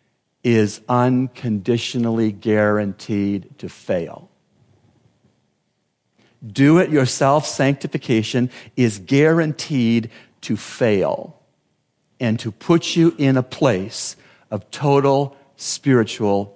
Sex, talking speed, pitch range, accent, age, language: male, 75 wpm, 110-140 Hz, American, 50-69, English